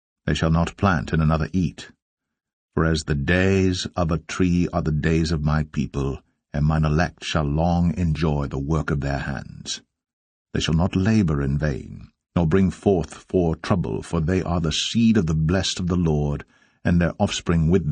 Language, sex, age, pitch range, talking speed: English, male, 60-79, 75-95 Hz, 190 wpm